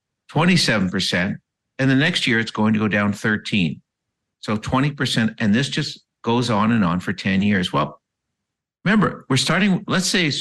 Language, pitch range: English, 105-140 Hz